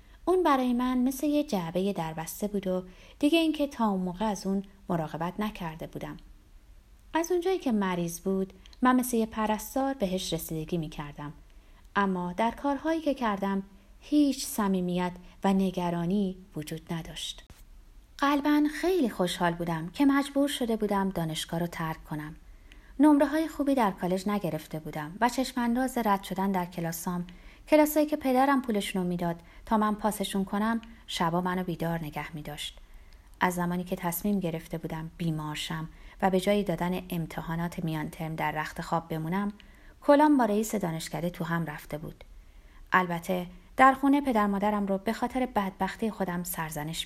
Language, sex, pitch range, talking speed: Persian, female, 170-245 Hz, 150 wpm